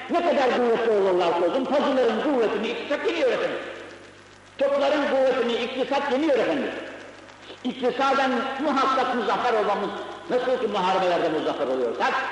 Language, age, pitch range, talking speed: Turkish, 60-79, 220-285 Hz, 110 wpm